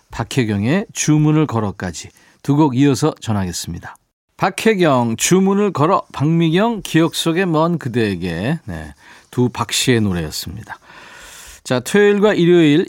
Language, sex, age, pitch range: Korean, male, 40-59, 125-170 Hz